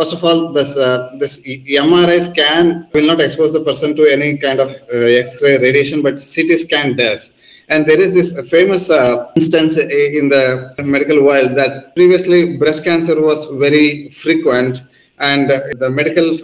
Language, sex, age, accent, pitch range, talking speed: English, male, 20-39, Indian, 135-165 Hz, 170 wpm